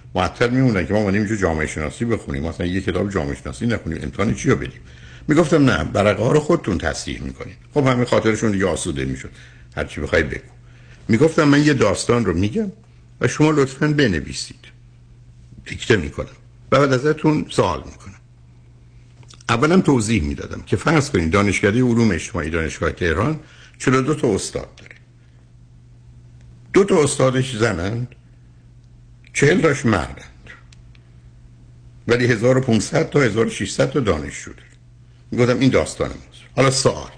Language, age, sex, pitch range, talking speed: Persian, 60-79, male, 90-125 Hz, 130 wpm